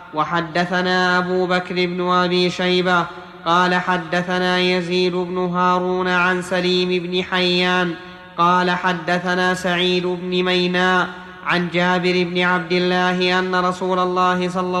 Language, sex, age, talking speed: Arabic, male, 30-49, 120 wpm